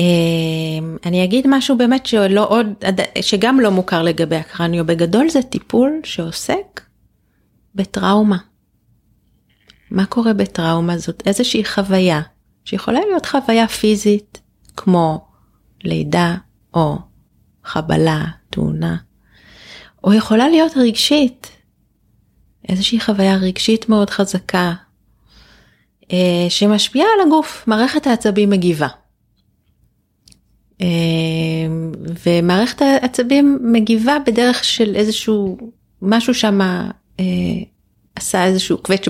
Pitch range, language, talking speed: 175-225 Hz, Hebrew, 90 wpm